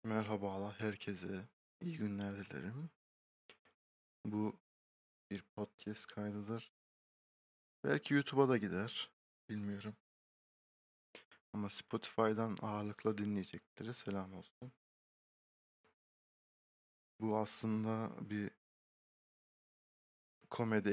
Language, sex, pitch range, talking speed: Turkish, male, 95-110 Hz, 70 wpm